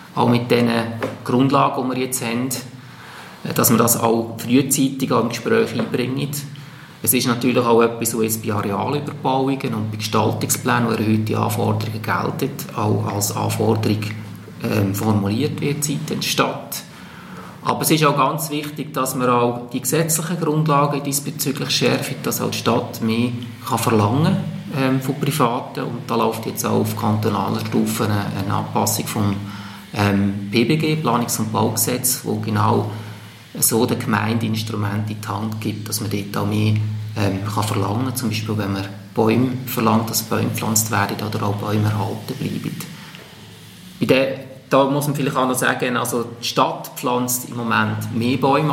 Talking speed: 155 wpm